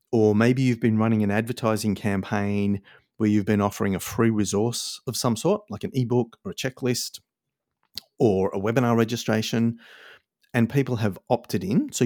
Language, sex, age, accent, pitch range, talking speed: English, male, 30-49, Australian, 105-130 Hz, 170 wpm